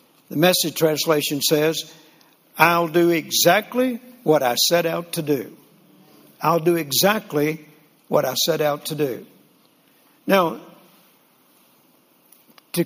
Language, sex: English, male